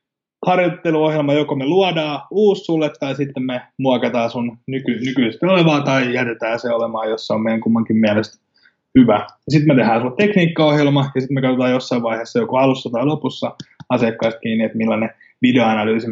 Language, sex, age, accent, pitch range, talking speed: English, male, 20-39, Finnish, 115-145 Hz, 170 wpm